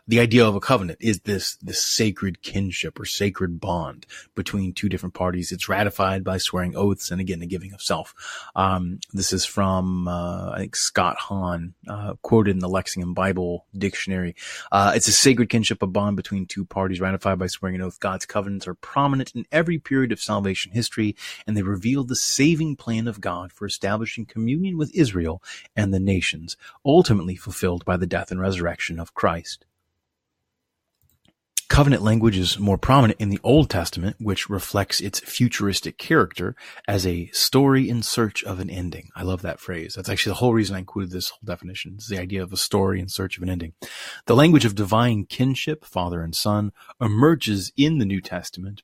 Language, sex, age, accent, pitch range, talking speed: English, male, 30-49, American, 90-110 Hz, 190 wpm